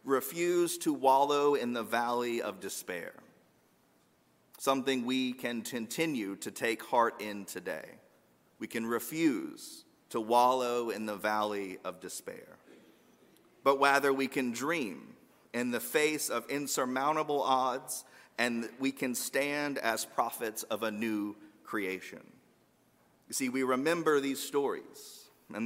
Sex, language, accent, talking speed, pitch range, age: male, English, American, 130 wpm, 120-145 Hz, 40-59